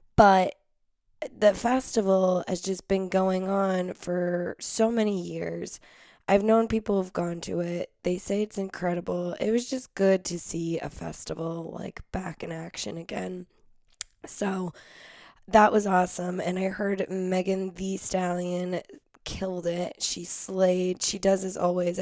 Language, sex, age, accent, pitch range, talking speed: English, female, 10-29, American, 175-195 Hz, 145 wpm